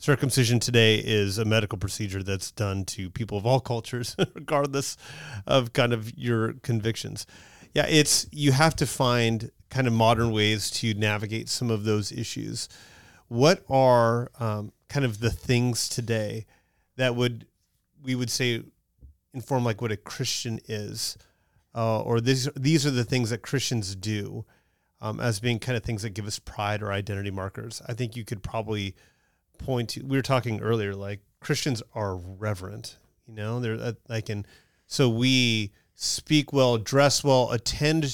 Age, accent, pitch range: 30-49, American, 110-130 Hz